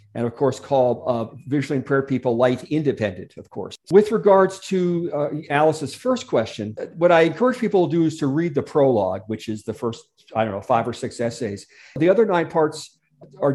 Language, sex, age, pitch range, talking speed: English, male, 50-69, 125-150 Hz, 205 wpm